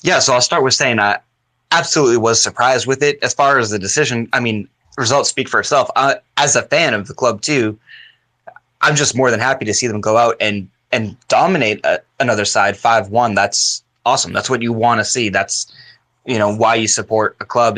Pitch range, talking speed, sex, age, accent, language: 105-125 Hz, 215 wpm, male, 20-39, American, English